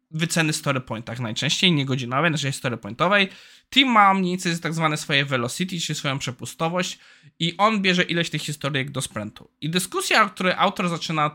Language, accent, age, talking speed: Polish, native, 20-39, 175 wpm